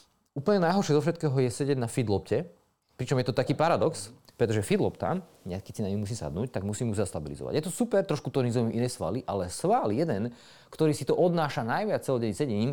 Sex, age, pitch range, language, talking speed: male, 30-49, 110-145 Hz, Slovak, 205 wpm